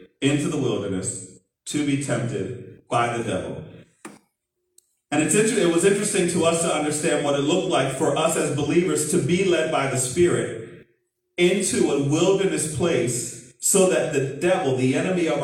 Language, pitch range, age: English, 125-170 Hz, 40-59